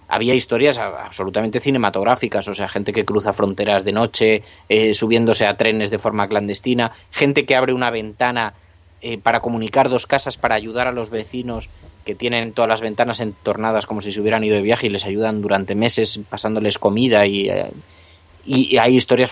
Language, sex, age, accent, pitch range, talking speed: Spanish, male, 20-39, Spanish, 100-125 Hz, 180 wpm